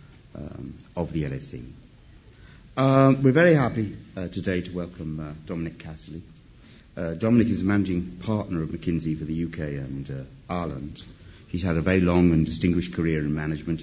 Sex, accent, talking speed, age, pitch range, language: male, British, 170 wpm, 50-69, 80-95 Hz, English